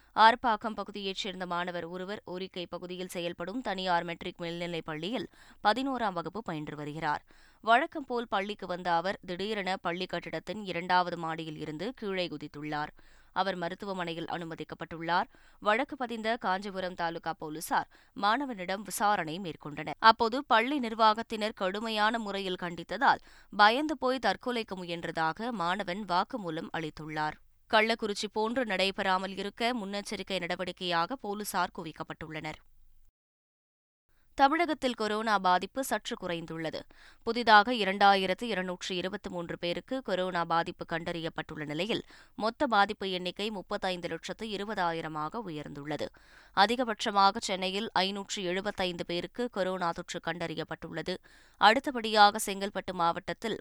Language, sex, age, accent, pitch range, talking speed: Tamil, female, 20-39, native, 170-210 Hz, 100 wpm